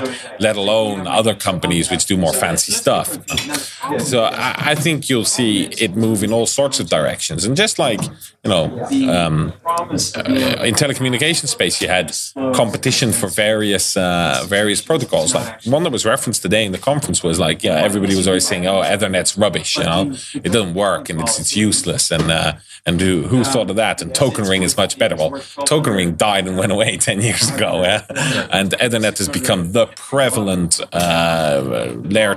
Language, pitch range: English, 95-130 Hz